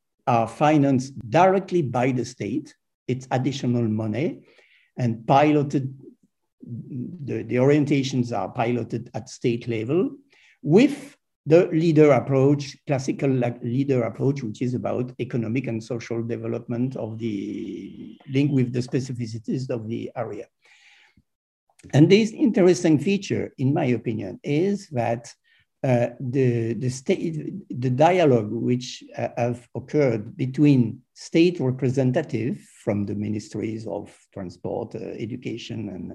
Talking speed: 115 wpm